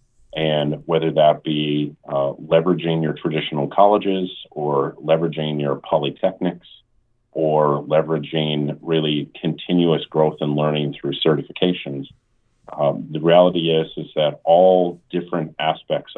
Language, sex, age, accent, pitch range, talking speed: English, male, 40-59, American, 75-90 Hz, 115 wpm